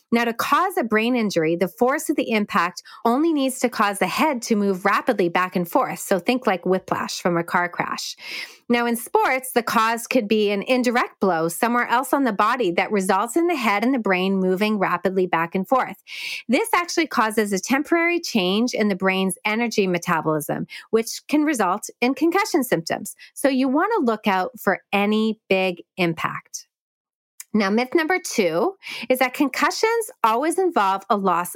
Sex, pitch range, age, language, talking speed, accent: female, 195-280 Hz, 30-49, English, 185 wpm, American